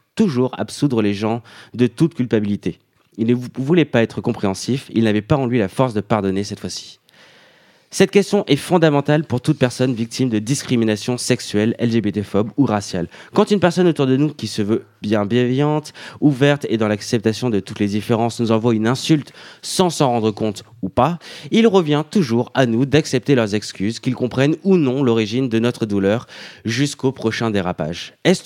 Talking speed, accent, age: 185 wpm, French, 20-39